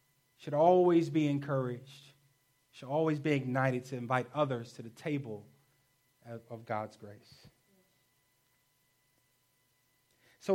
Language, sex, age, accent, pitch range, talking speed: English, male, 30-49, American, 130-170 Hz, 100 wpm